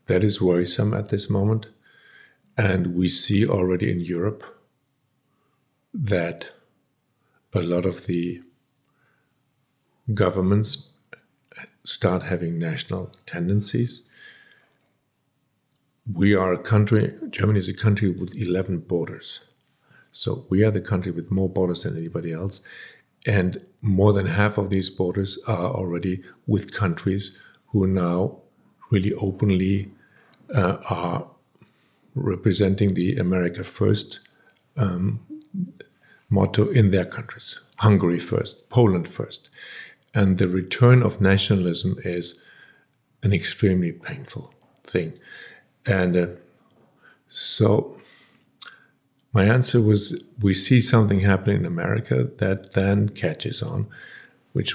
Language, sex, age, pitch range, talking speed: English, male, 50-69, 90-110 Hz, 110 wpm